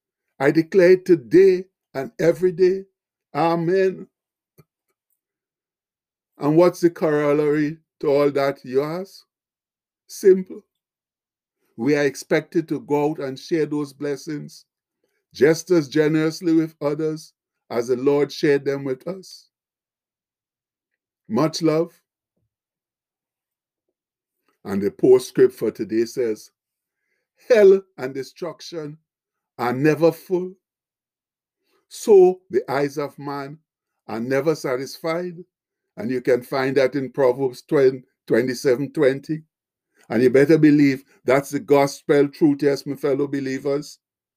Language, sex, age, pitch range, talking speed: English, male, 50-69, 140-180 Hz, 110 wpm